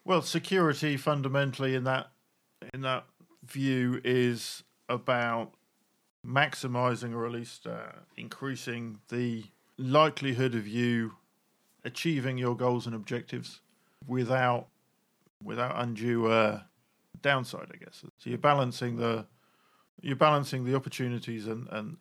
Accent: British